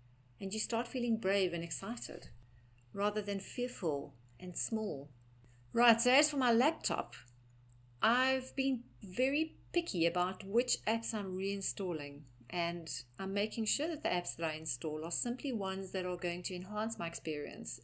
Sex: female